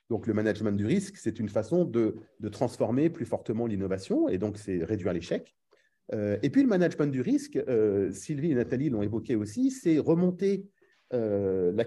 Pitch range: 110-175 Hz